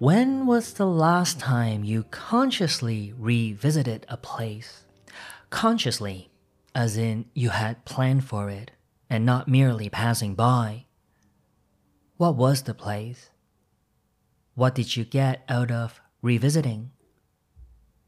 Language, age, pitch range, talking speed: English, 30-49, 110-135 Hz, 115 wpm